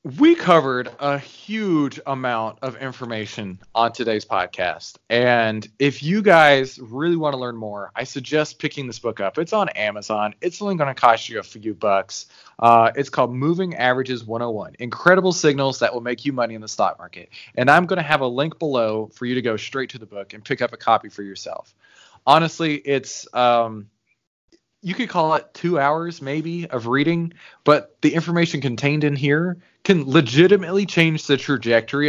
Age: 20-39